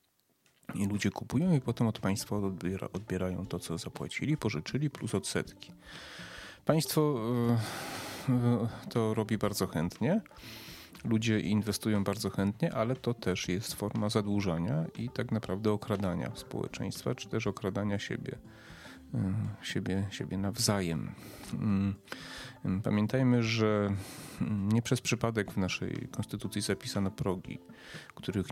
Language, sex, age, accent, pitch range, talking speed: Polish, male, 30-49, native, 95-115 Hz, 110 wpm